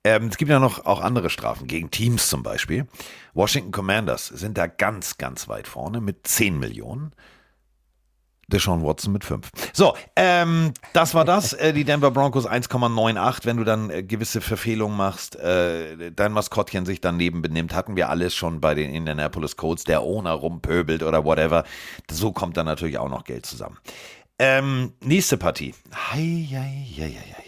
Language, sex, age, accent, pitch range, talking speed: German, male, 50-69, German, 80-125 Hz, 160 wpm